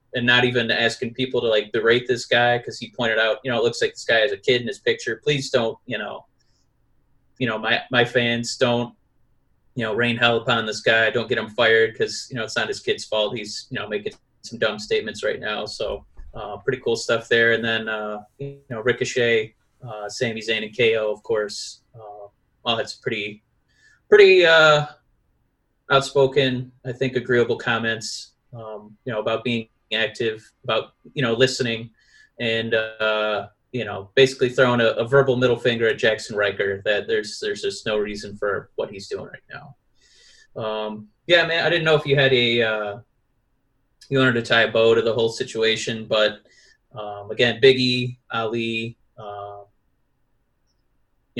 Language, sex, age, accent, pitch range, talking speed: English, male, 20-39, American, 110-135 Hz, 185 wpm